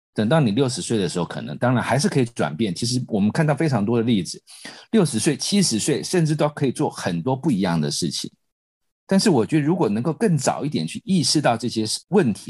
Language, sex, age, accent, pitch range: Chinese, male, 50-69, native, 95-145 Hz